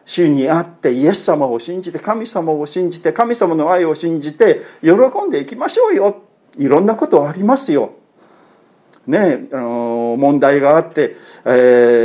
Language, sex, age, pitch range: Japanese, male, 50-69, 130-185 Hz